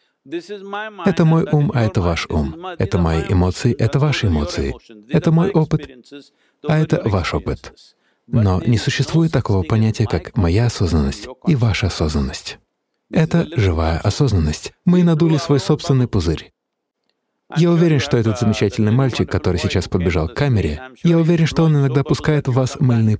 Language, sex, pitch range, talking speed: English, male, 95-155 Hz, 155 wpm